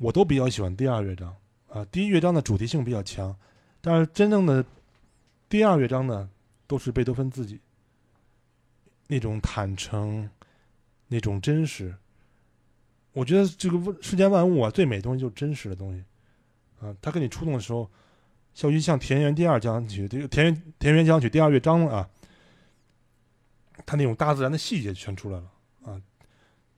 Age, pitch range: 20-39, 110-145 Hz